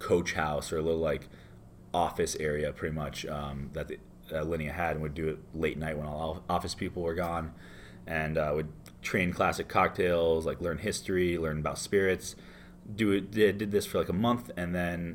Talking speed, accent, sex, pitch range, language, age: 200 wpm, American, male, 70-90 Hz, English, 30-49